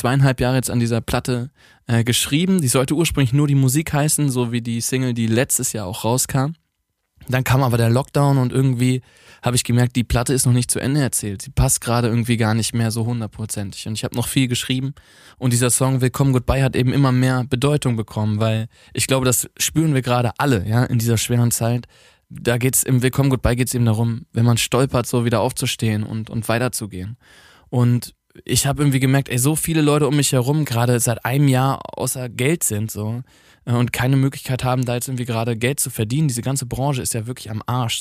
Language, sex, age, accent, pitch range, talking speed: German, male, 20-39, German, 115-130 Hz, 220 wpm